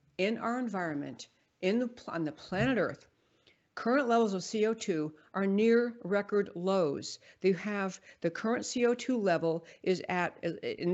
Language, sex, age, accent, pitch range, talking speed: English, female, 60-79, American, 170-220 Hz, 145 wpm